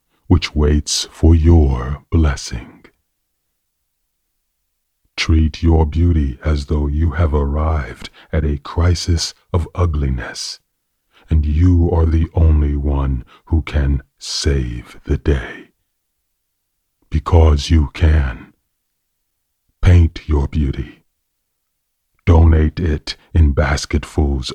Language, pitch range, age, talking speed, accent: English, 75-85 Hz, 40-59, 95 wpm, American